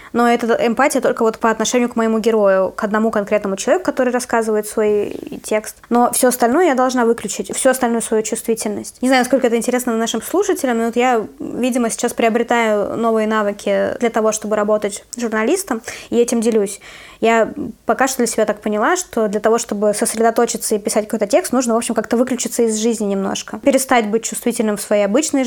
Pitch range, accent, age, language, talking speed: 220-250 Hz, native, 20-39, Russian, 185 wpm